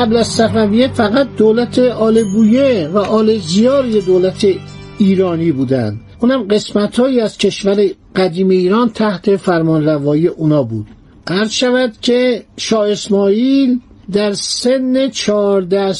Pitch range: 175-230 Hz